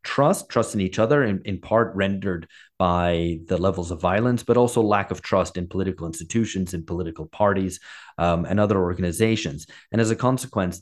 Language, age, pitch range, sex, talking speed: English, 30-49, 95-115 Hz, male, 185 wpm